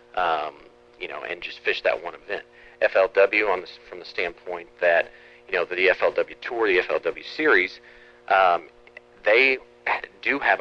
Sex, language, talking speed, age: male, English, 160 wpm, 40-59